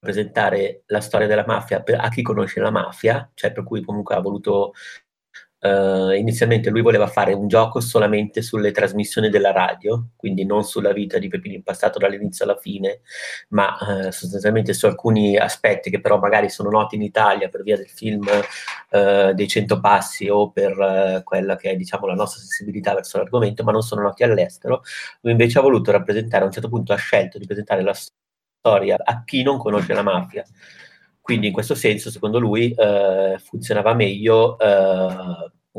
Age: 30-49